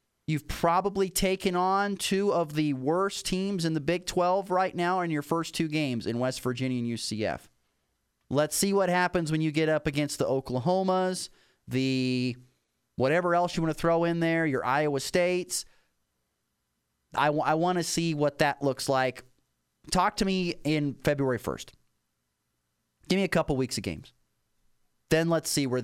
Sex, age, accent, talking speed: male, 30-49, American, 170 wpm